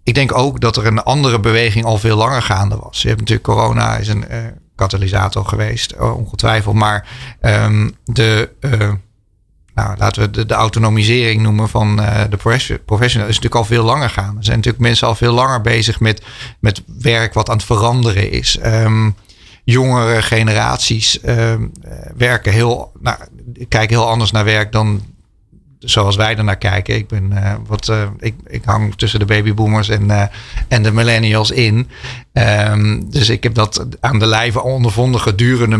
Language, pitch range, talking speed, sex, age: Dutch, 105-115 Hz, 175 wpm, male, 40-59